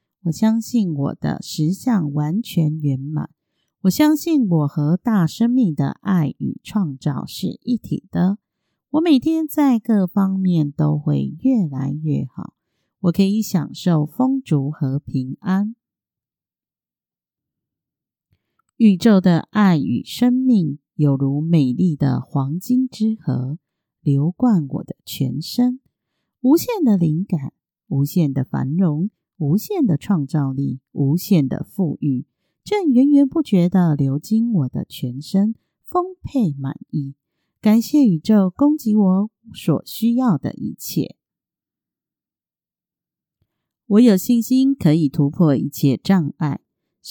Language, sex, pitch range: Chinese, female, 150-230 Hz